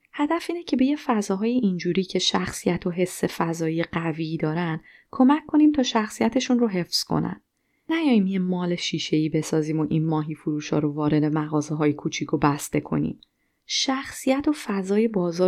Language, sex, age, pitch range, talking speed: Persian, female, 30-49, 160-235 Hz, 160 wpm